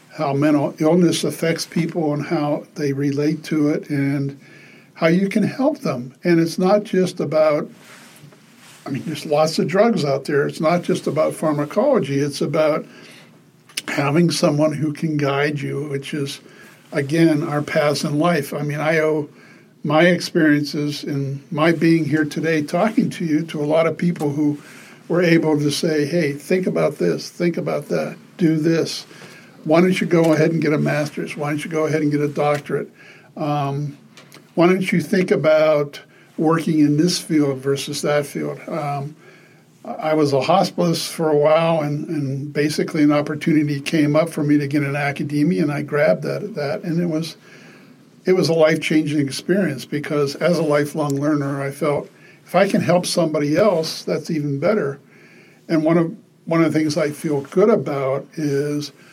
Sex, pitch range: male, 145-170 Hz